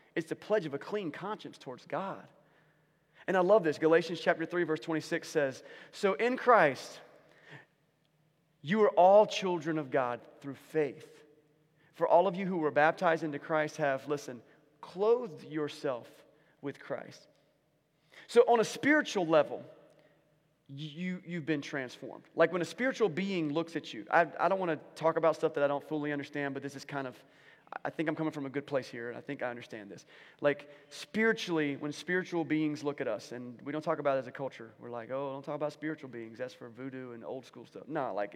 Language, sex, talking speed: English, male, 200 wpm